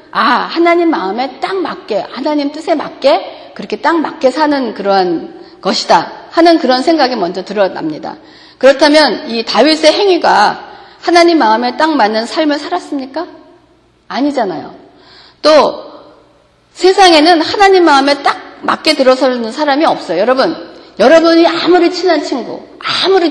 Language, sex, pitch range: Korean, female, 220-330 Hz